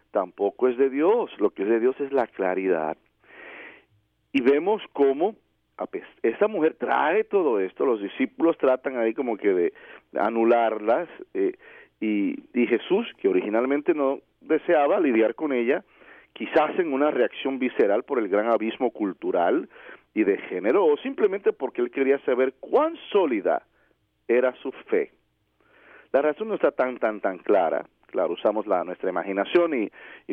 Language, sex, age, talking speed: English, male, 40-59, 155 wpm